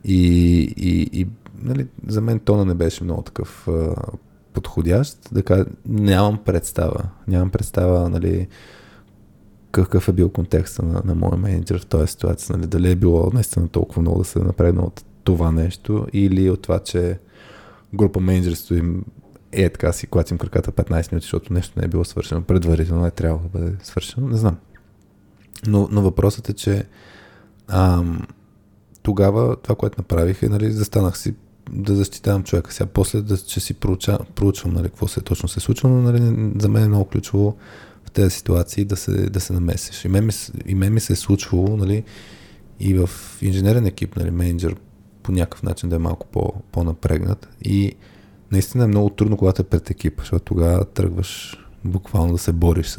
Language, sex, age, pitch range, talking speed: Bulgarian, male, 20-39, 90-105 Hz, 185 wpm